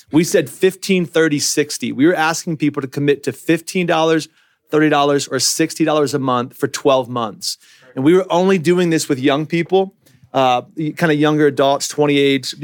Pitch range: 135-160 Hz